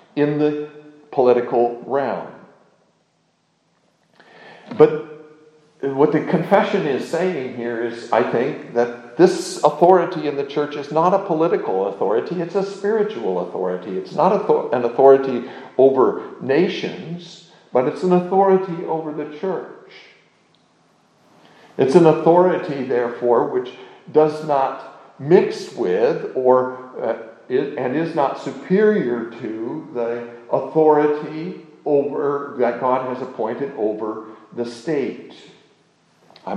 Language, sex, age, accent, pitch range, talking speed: English, male, 60-79, American, 120-165 Hz, 115 wpm